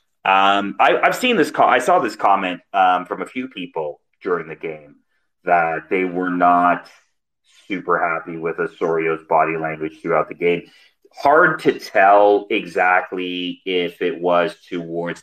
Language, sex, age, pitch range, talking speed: English, male, 30-49, 90-105 Hz, 155 wpm